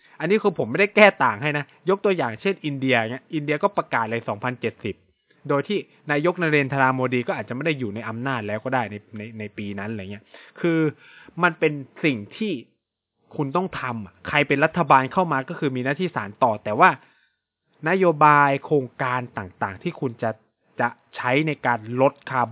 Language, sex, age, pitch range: Thai, male, 20-39, 115-160 Hz